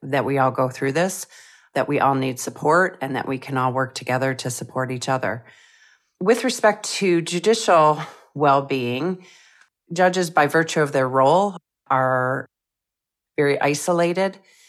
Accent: American